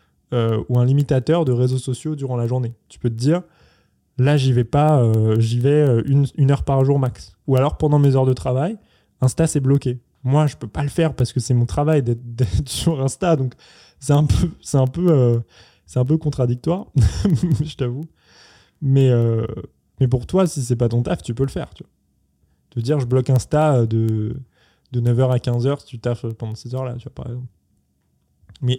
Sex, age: male, 20-39